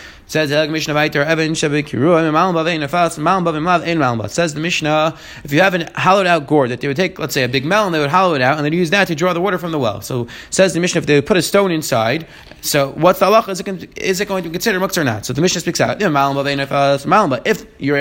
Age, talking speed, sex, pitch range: 20-39, 225 wpm, male, 150-190 Hz